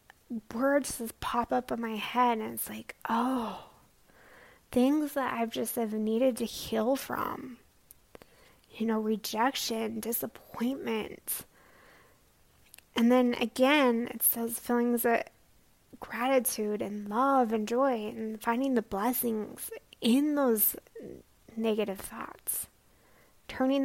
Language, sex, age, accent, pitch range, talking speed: English, female, 20-39, American, 215-245 Hz, 115 wpm